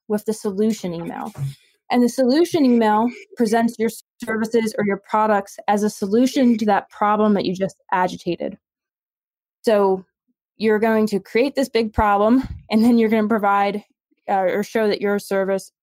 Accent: American